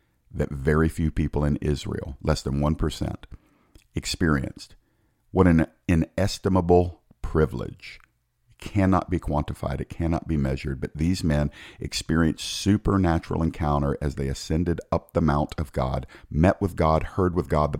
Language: English